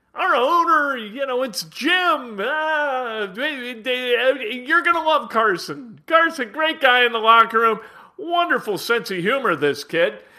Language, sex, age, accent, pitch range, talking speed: English, male, 50-69, American, 195-280 Hz, 145 wpm